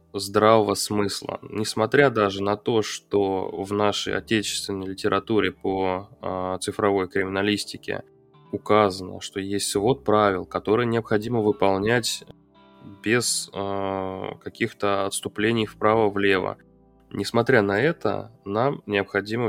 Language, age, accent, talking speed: Russian, 20-39, native, 100 wpm